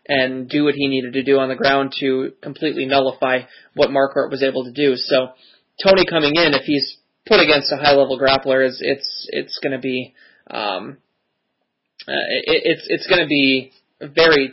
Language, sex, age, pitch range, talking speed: English, male, 20-39, 135-145 Hz, 180 wpm